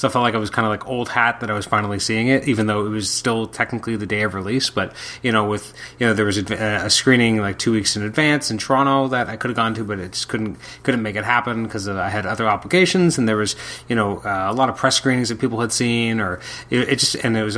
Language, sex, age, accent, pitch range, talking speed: English, male, 30-49, American, 105-135 Hz, 295 wpm